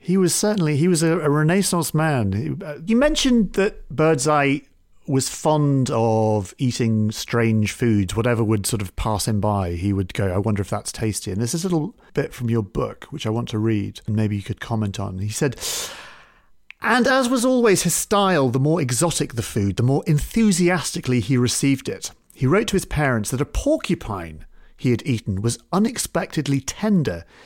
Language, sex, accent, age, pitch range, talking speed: English, male, British, 40-59, 110-170 Hz, 190 wpm